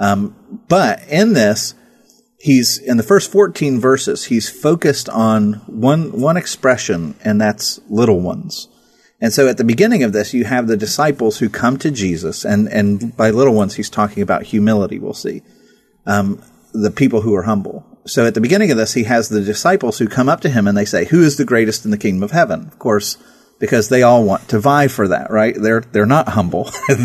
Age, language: 40-59, English